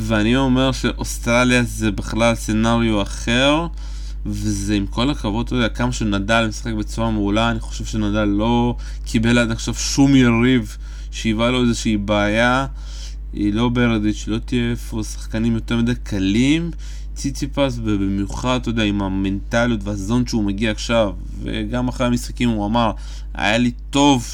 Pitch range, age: 105-125 Hz, 20-39